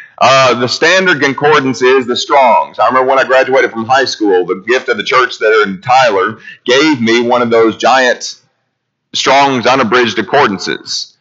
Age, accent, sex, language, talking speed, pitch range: 40-59, American, male, English, 170 wpm, 130-195 Hz